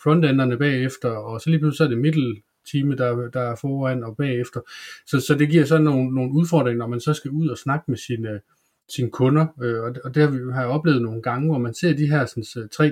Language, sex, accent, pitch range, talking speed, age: Danish, male, native, 125-150 Hz, 220 wpm, 30-49